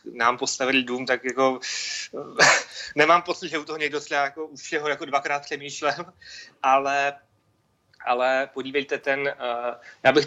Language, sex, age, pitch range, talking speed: Czech, male, 30-49, 120-140 Hz, 140 wpm